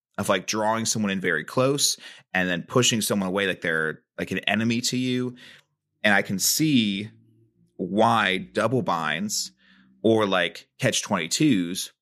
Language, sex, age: English, male, 30-49